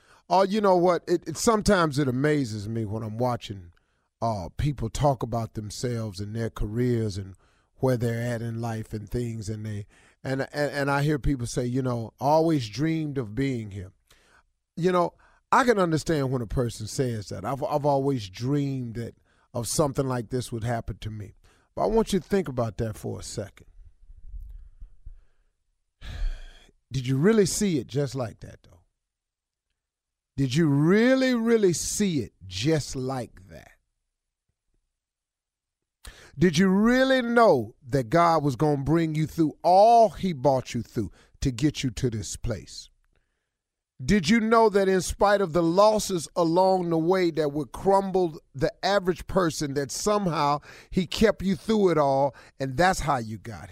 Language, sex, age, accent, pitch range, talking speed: English, male, 40-59, American, 110-175 Hz, 170 wpm